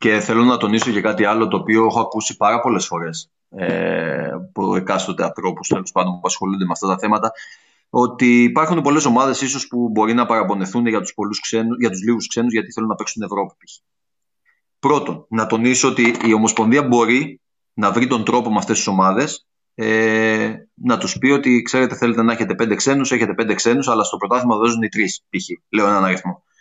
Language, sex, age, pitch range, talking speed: Greek, male, 30-49, 110-135 Hz, 185 wpm